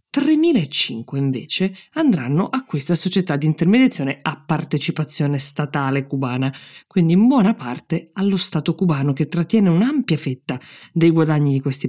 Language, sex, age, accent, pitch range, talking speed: Italian, female, 20-39, native, 140-175 Hz, 130 wpm